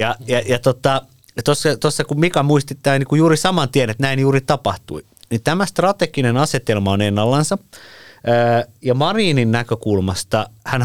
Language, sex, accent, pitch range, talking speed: Finnish, male, native, 110-135 Hz, 145 wpm